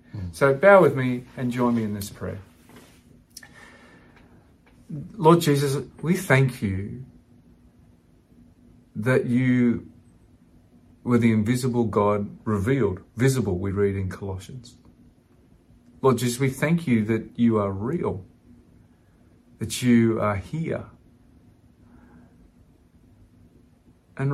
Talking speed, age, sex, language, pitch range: 100 wpm, 40-59, male, English, 105-130 Hz